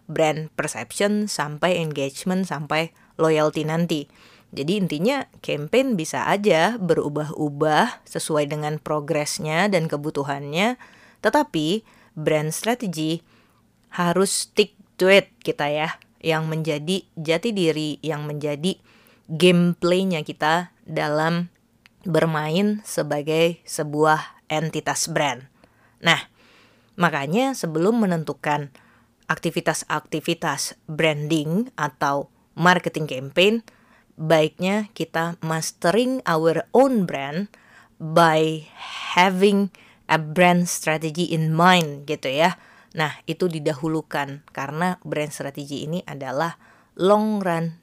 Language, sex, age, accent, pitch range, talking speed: Indonesian, female, 20-39, native, 150-180 Hz, 95 wpm